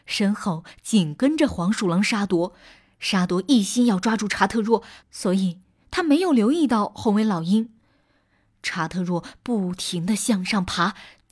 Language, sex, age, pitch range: Chinese, female, 20-39, 170-250 Hz